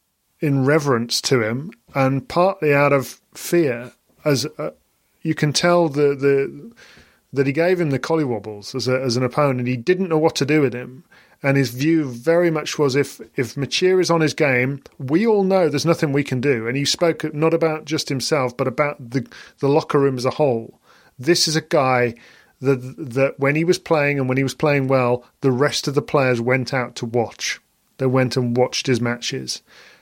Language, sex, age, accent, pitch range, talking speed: English, male, 40-59, British, 130-150 Hz, 210 wpm